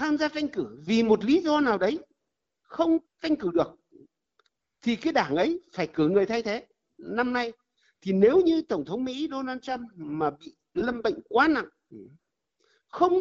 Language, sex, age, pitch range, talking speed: Vietnamese, male, 60-79, 220-330 Hz, 180 wpm